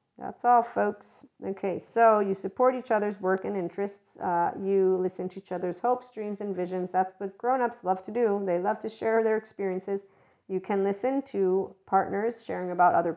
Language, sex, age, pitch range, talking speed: English, female, 40-59, 180-215 Hz, 190 wpm